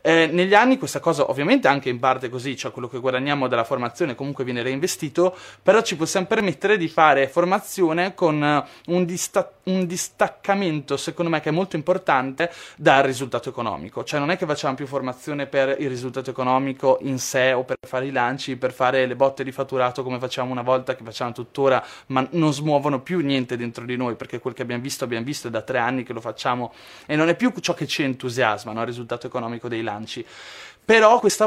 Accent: native